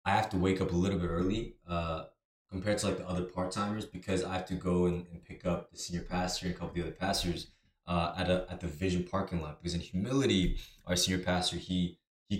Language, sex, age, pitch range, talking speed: English, male, 20-39, 85-100 Hz, 245 wpm